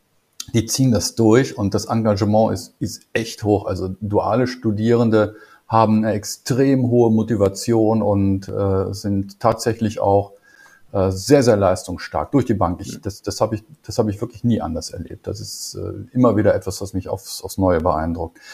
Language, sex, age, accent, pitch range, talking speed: German, male, 50-69, German, 100-120 Hz, 175 wpm